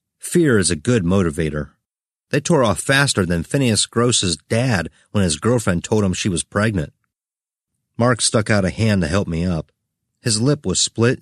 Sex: male